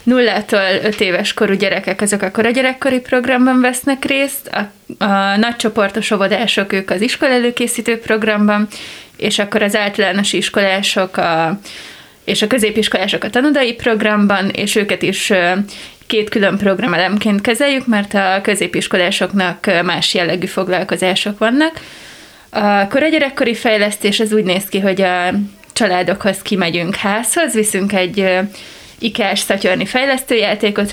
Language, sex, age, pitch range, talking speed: Hungarian, female, 20-39, 190-225 Hz, 125 wpm